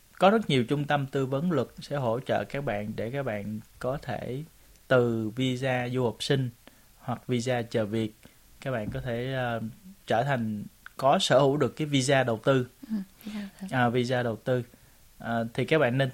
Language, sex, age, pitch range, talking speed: Vietnamese, male, 20-39, 115-145 Hz, 190 wpm